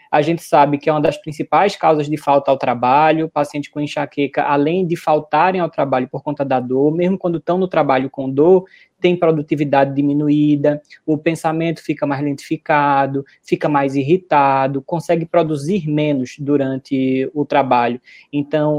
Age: 20-39